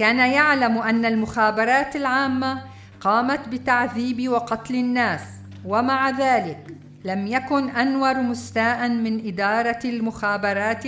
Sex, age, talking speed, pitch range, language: female, 50-69, 100 wpm, 200-255 Hz, Arabic